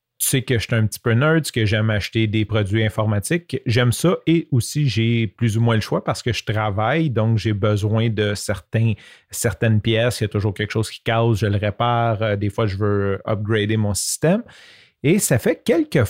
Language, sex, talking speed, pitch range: French, male, 215 wpm, 110-150 Hz